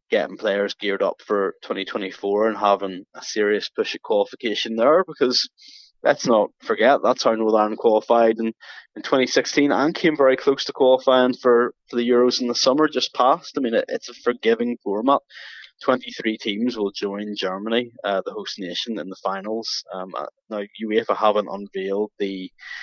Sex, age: male, 20-39